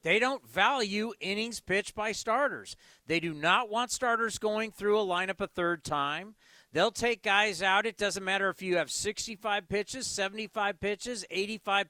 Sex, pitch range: male, 175-220 Hz